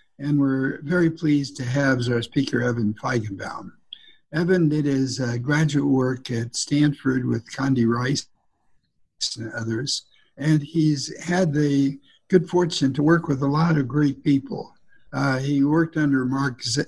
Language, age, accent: English, 60-79, American